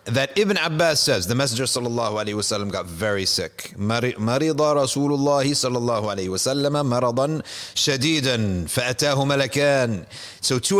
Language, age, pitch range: English, 30-49, 95-135 Hz